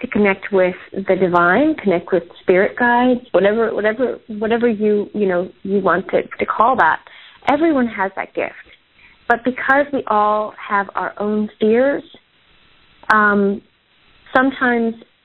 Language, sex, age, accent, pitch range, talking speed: English, female, 30-49, American, 195-235 Hz, 140 wpm